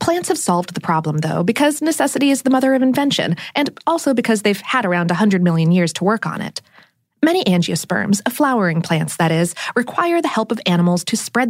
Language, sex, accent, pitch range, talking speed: English, female, American, 175-250 Hz, 210 wpm